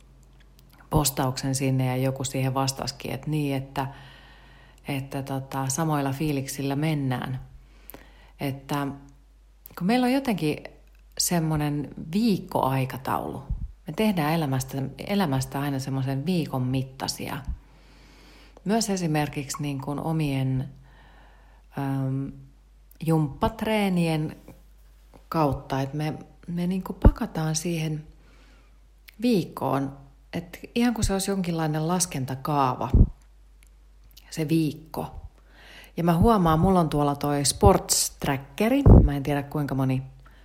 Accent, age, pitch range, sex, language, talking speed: native, 40-59, 130-160 Hz, female, Finnish, 100 wpm